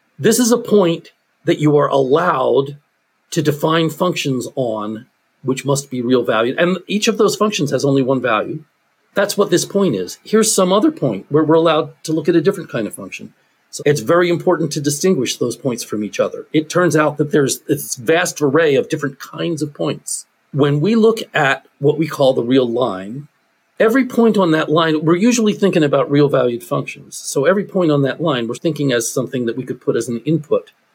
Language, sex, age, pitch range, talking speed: English, male, 40-59, 135-180 Hz, 210 wpm